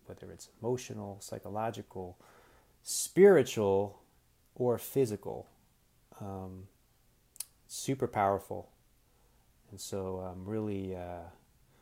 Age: 30-49